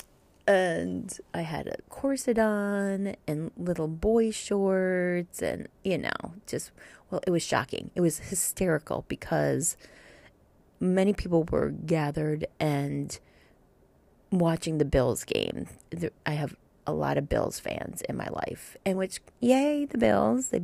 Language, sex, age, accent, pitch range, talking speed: English, female, 30-49, American, 170-235 Hz, 135 wpm